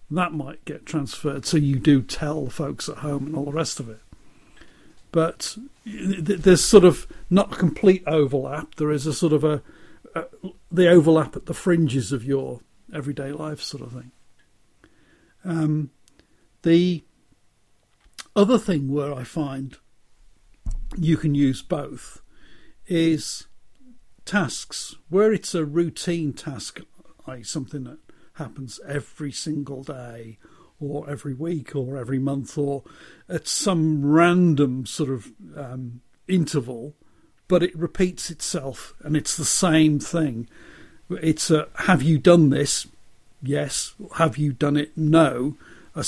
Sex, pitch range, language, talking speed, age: male, 135-165 Hz, English, 140 wpm, 50-69